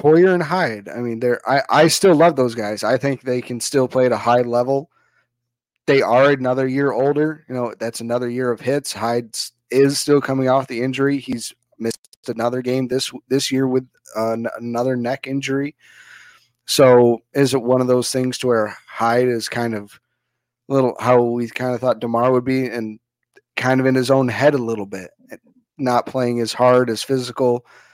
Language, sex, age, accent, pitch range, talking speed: English, male, 30-49, American, 120-135 Hz, 200 wpm